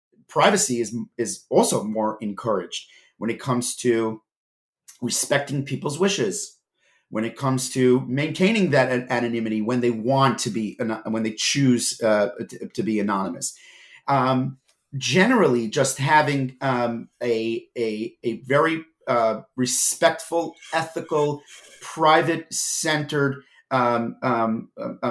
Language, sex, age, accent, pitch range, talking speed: English, male, 40-59, American, 120-170 Hz, 115 wpm